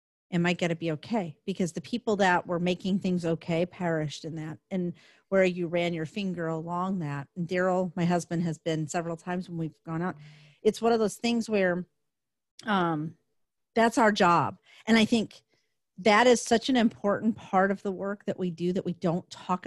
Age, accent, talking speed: 40-59, American, 200 wpm